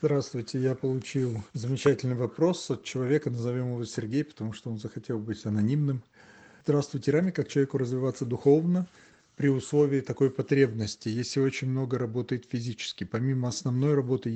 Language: Russian